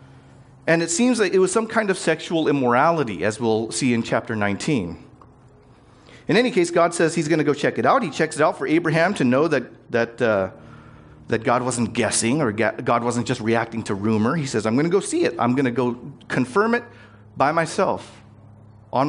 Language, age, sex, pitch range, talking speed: English, 40-59, male, 110-150 Hz, 215 wpm